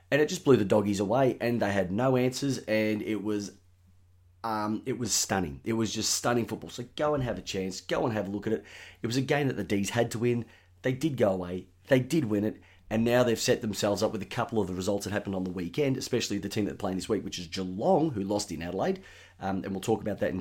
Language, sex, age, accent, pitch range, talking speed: English, male, 30-49, Australian, 95-115 Hz, 275 wpm